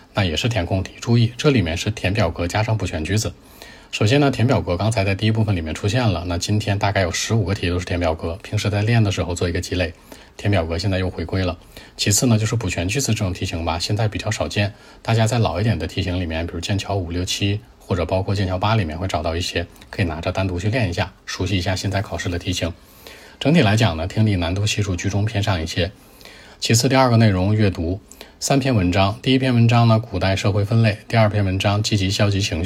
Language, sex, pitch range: Chinese, male, 90-110 Hz